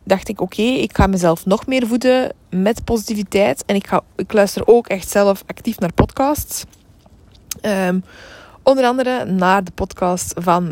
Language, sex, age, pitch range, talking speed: Dutch, female, 20-39, 180-240 Hz, 170 wpm